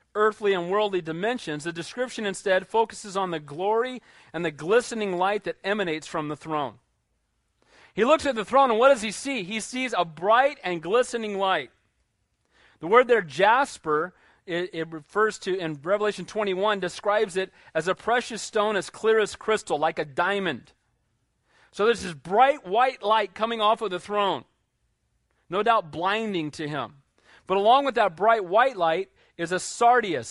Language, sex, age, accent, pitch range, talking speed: English, male, 40-59, American, 185-245 Hz, 170 wpm